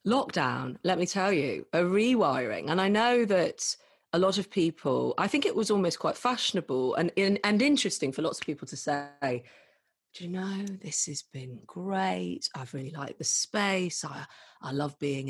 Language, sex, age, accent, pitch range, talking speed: English, female, 30-49, British, 145-215 Hz, 185 wpm